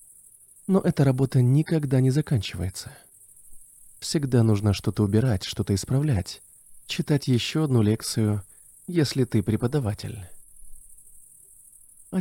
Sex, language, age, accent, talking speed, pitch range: male, Russian, 20-39, native, 100 wpm, 100-130 Hz